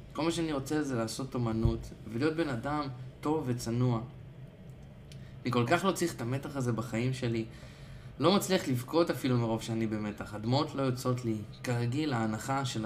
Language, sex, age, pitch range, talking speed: Hebrew, male, 20-39, 115-135 Hz, 170 wpm